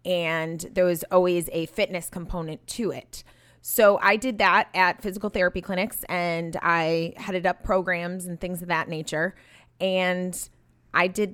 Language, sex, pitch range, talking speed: English, female, 165-195 Hz, 160 wpm